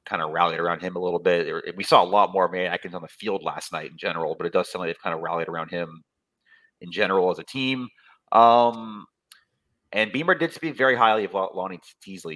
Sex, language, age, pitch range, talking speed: male, English, 30-49, 85-130 Hz, 240 wpm